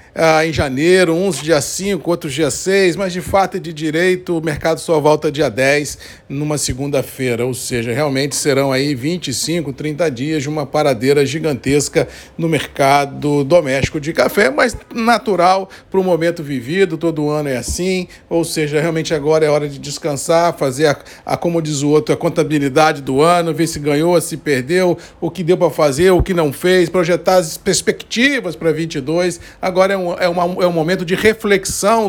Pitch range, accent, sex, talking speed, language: 150-180 Hz, Brazilian, male, 185 wpm, Portuguese